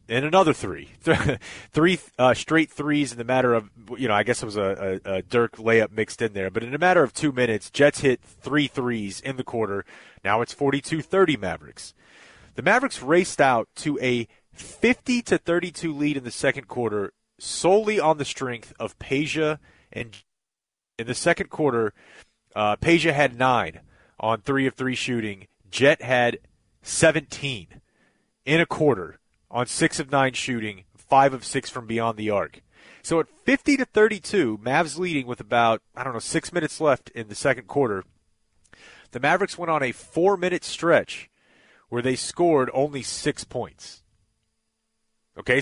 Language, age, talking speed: English, 30-49, 160 wpm